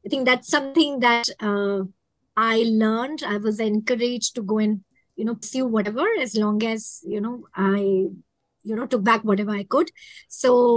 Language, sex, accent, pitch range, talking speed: English, male, Indian, 220-270 Hz, 180 wpm